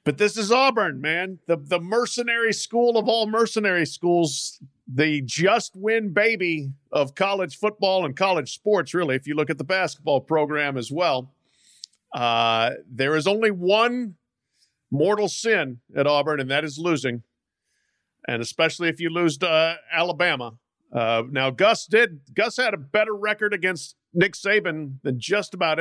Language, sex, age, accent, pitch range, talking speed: English, male, 50-69, American, 140-200 Hz, 155 wpm